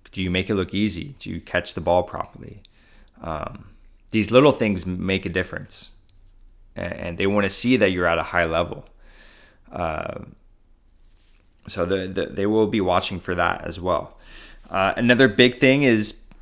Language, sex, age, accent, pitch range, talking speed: English, male, 20-39, American, 85-100 Hz, 170 wpm